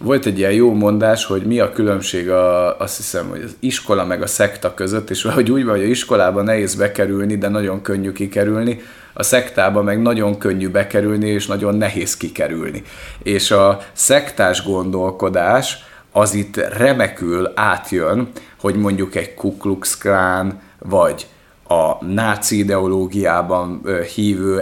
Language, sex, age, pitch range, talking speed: Hungarian, male, 30-49, 95-105 Hz, 145 wpm